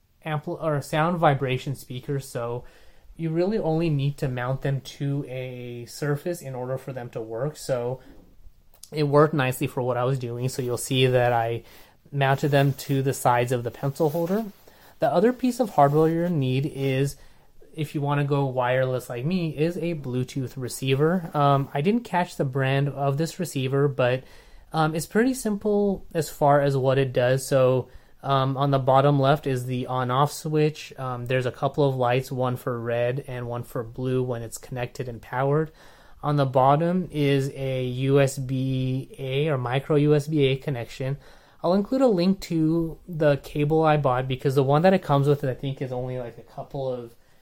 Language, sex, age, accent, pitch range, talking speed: English, male, 20-39, American, 125-150 Hz, 185 wpm